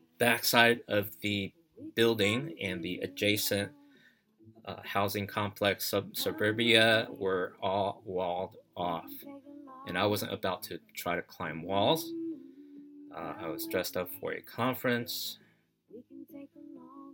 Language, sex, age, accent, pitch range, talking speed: English, male, 20-39, American, 95-130 Hz, 110 wpm